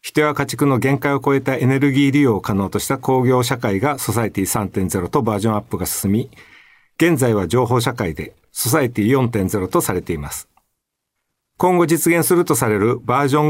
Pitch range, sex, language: 105-140 Hz, male, Japanese